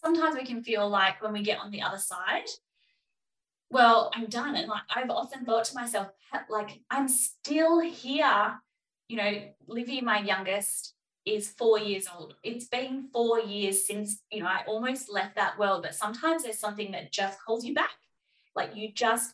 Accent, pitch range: Australian, 200-270 Hz